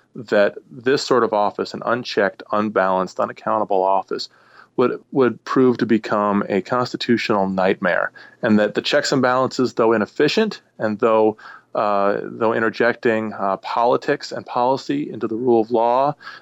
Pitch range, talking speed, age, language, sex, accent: 100-120 Hz, 145 wpm, 30-49, English, male, American